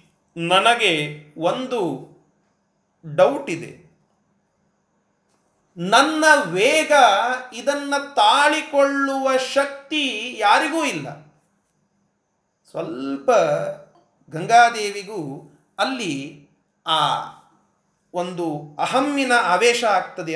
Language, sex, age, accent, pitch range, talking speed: Kannada, male, 30-49, native, 190-295 Hz, 55 wpm